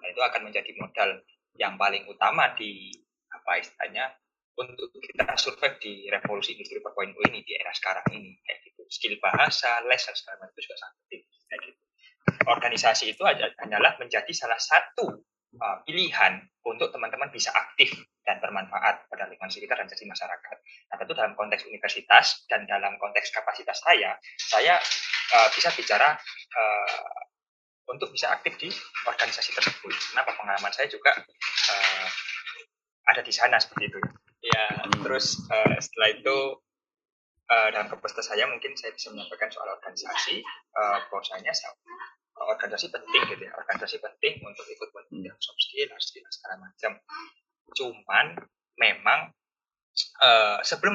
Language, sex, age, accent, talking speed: Indonesian, male, 20-39, native, 140 wpm